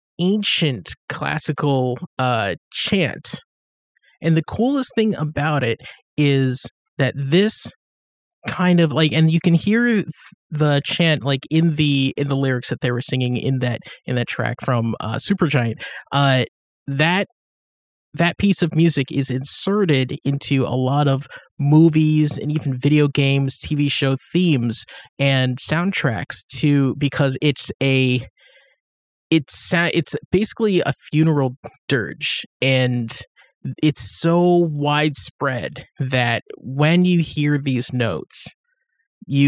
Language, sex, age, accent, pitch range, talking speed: English, male, 20-39, American, 130-160 Hz, 125 wpm